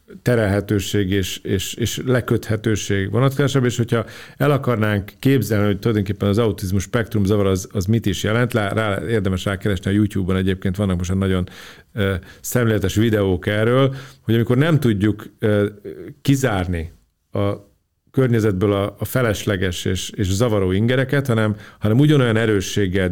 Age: 40-59